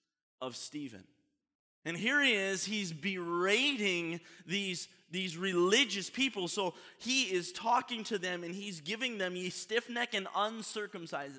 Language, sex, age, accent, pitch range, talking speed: English, male, 20-39, American, 125-185 Hz, 140 wpm